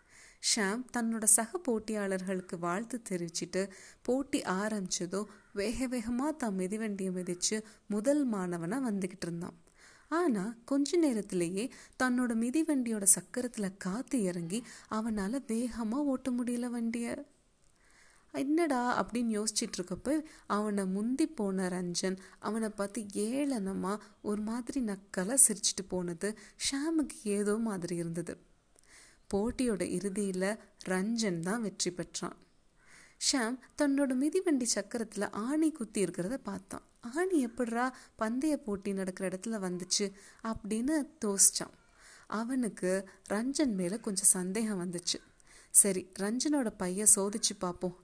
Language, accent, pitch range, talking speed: Tamil, native, 185-245 Hz, 100 wpm